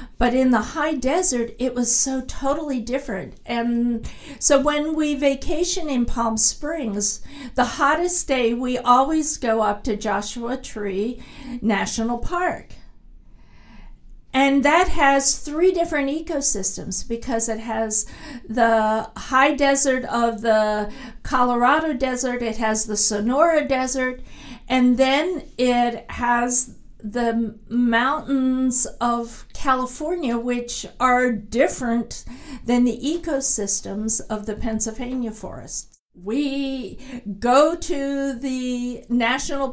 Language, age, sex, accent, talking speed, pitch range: English, 50-69, female, American, 110 wpm, 230-275 Hz